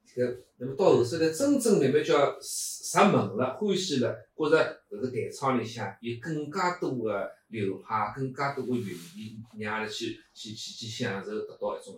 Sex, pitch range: male, 115-165 Hz